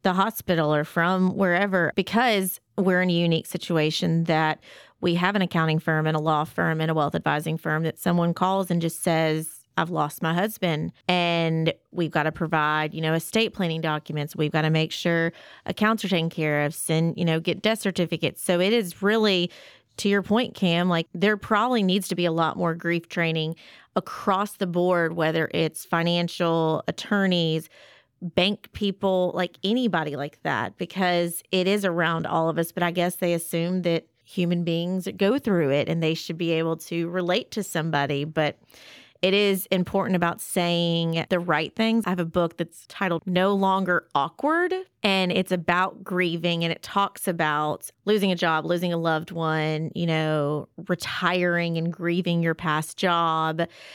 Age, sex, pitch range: 30-49, female, 160-185 Hz